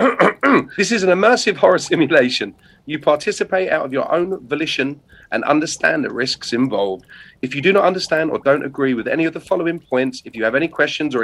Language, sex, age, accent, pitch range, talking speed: English, male, 40-59, British, 125-165 Hz, 205 wpm